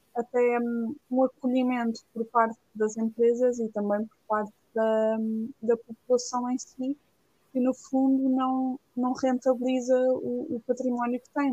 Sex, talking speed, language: female, 140 wpm, Portuguese